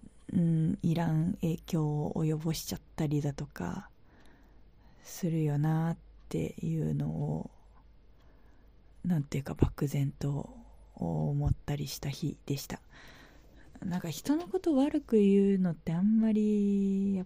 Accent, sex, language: native, female, Japanese